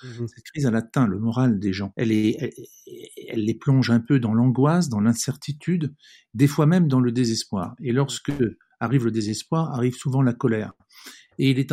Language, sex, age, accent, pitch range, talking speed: French, male, 50-69, French, 115-140 Hz, 195 wpm